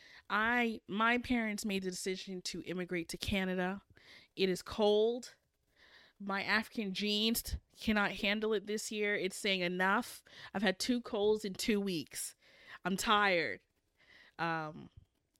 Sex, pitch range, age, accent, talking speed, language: female, 170-205 Hz, 20-39, American, 135 wpm, English